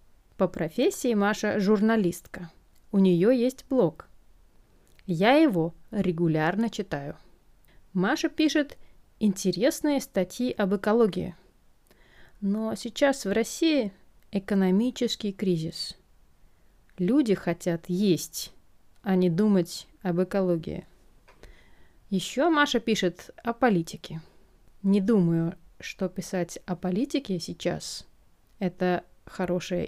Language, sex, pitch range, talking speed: Russian, female, 180-240 Hz, 90 wpm